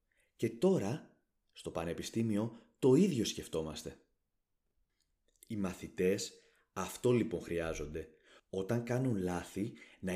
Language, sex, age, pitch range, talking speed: Greek, male, 30-49, 95-125 Hz, 95 wpm